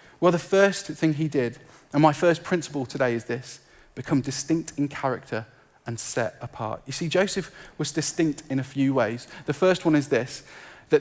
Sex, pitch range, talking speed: male, 130-170 Hz, 190 wpm